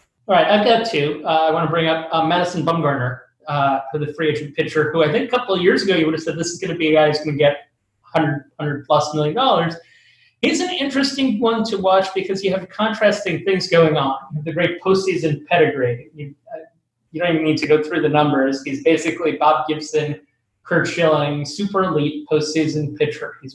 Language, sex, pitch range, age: English, male, 150-190 Hz, 30-49